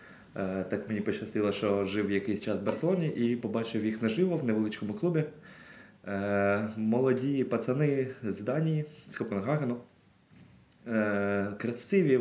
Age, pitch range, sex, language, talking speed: 20-39, 100-130 Hz, male, Ukrainian, 115 wpm